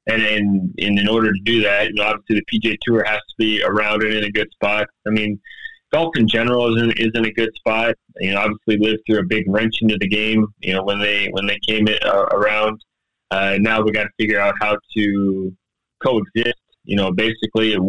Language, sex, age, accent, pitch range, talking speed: English, male, 20-39, American, 105-120 Hz, 220 wpm